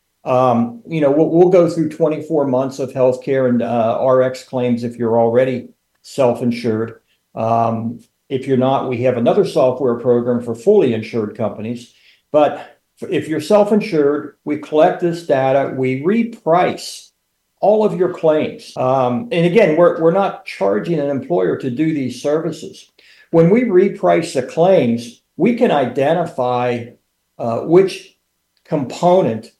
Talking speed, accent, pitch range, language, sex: 140 wpm, American, 125-160 Hz, English, male